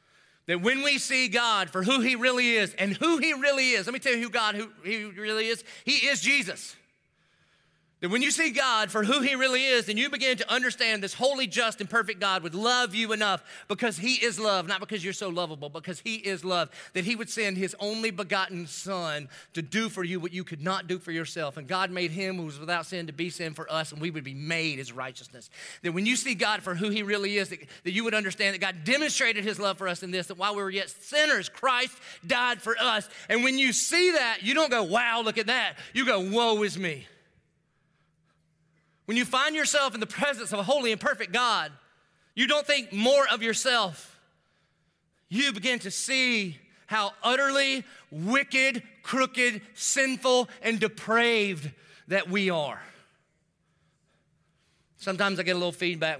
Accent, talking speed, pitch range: American, 210 wpm, 170-245 Hz